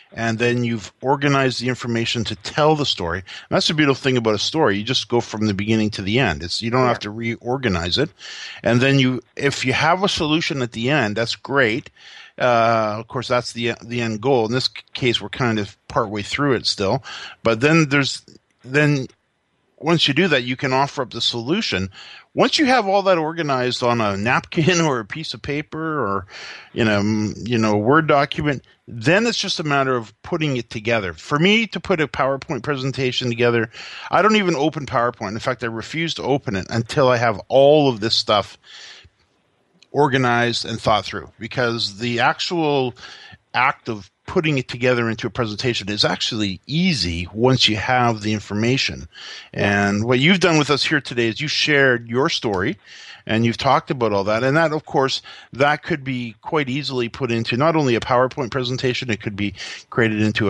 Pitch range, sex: 110-145 Hz, male